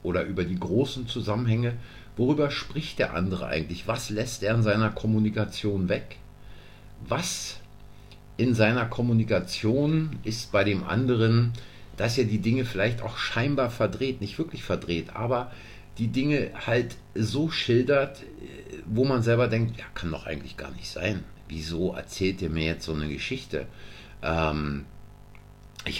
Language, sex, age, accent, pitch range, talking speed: German, male, 50-69, German, 95-125 Hz, 145 wpm